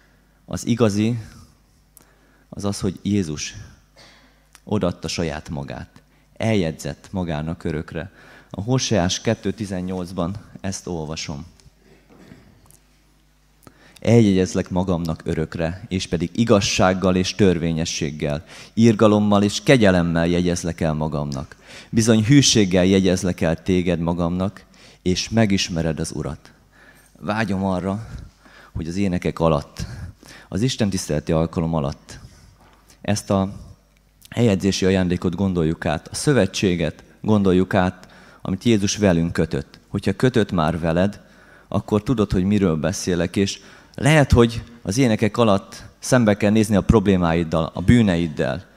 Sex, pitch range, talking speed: male, 85-105 Hz, 110 wpm